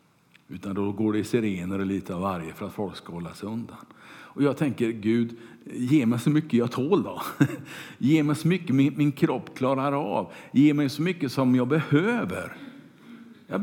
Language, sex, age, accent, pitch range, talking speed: Swedish, male, 50-69, Norwegian, 115-170 Hz, 200 wpm